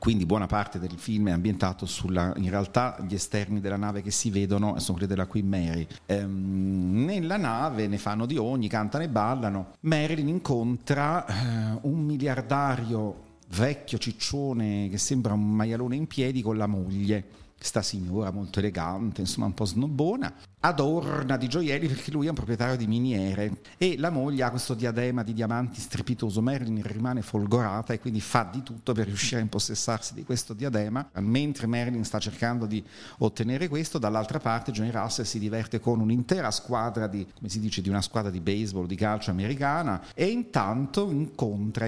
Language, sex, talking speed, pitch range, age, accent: Italian, male, 175 wpm, 100-130 Hz, 50-69, native